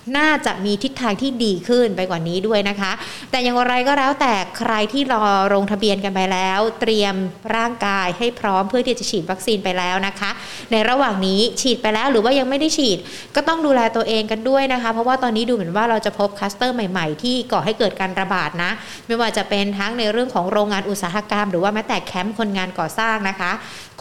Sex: female